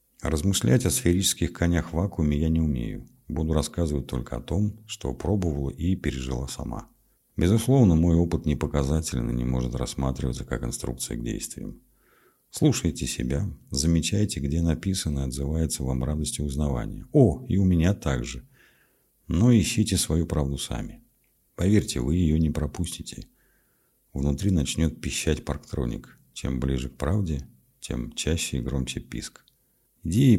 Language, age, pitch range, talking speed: Russian, 50-69, 65-85 Hz, 140 wpm